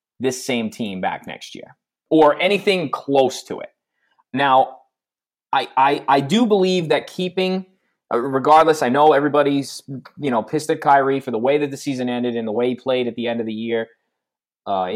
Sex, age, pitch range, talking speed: male, 20-39, 120-150 Hz, 195 wpm